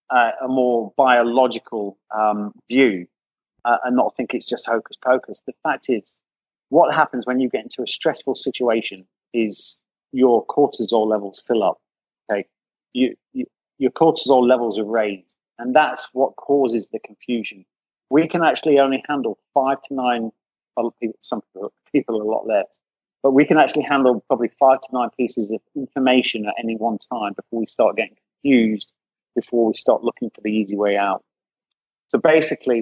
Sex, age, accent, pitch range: male, 30-49, British, 110-140 Hz